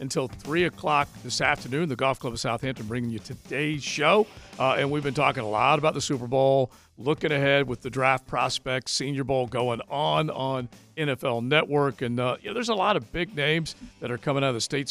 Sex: male